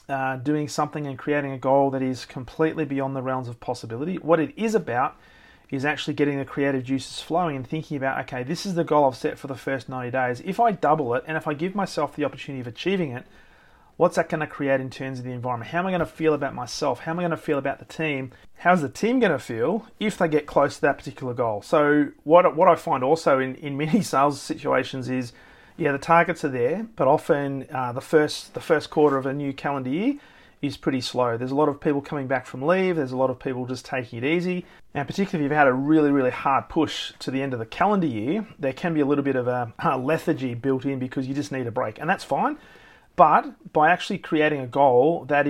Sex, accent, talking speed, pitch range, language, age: male, Australian, 250 wpm, 130-160 Hz, English, 30-49